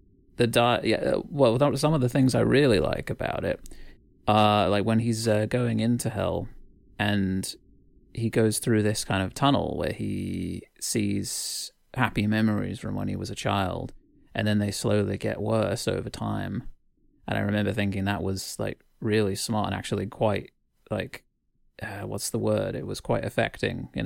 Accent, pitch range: British, 100-115 Hz